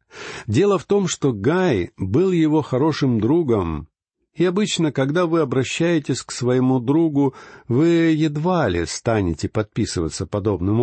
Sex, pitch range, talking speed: male, 105-140 Hz, 130 wpm